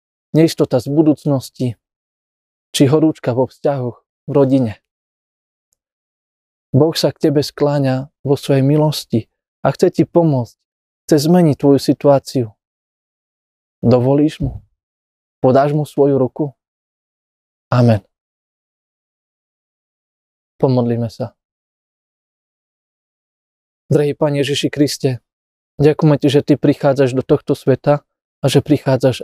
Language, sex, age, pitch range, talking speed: Slovak, male, 20-39, 125-145 Hz, 100 wpm